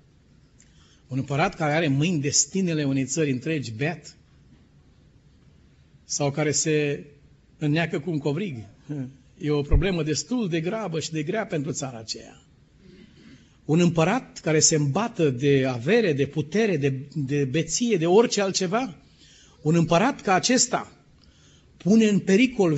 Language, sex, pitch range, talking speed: Romanian, male, 150-190 Hz, 135 wpm